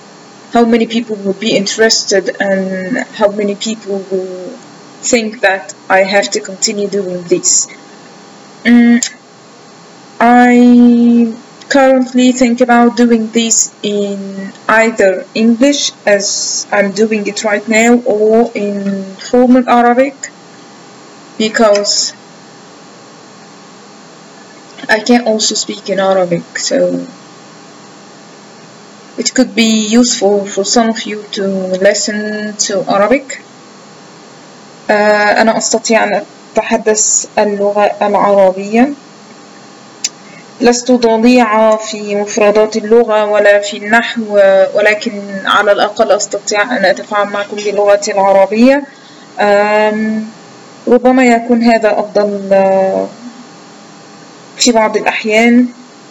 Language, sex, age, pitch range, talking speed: English, female, 20-39, 200-235 Hz, 80 wpm